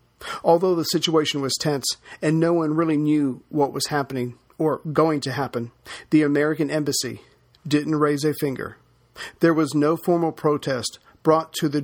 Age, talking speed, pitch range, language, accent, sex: 50-69, 160 wpm, 135-155 Hz, English, American, male